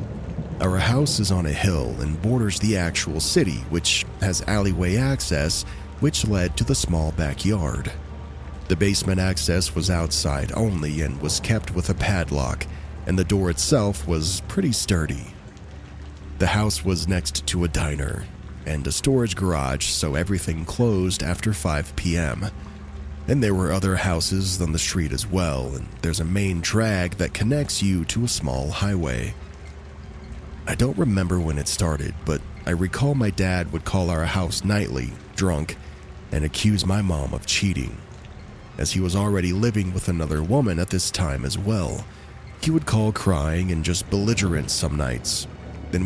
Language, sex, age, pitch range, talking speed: English, male, 40-59, 75-100 Hz, 165 wpm